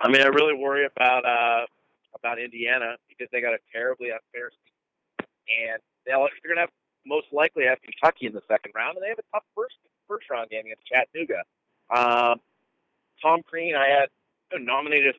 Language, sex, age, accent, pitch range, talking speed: English, male, 40-59, American, 120-190 Hz, 180 wpm